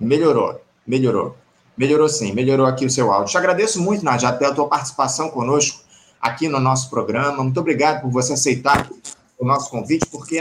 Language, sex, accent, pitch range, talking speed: Portuguese, male, Brazilian, 140-185 Hz, 175 wpm